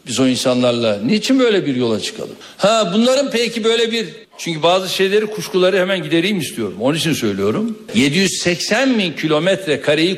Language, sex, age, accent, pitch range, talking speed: Turkish, male, 60-79, native, 165-220 Hz, 160 wpm